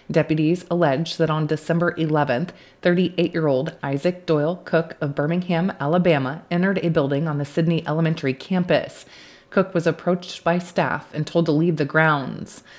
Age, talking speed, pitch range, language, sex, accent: 30-49, 160 wpm, 150-175 Hz, English, female, American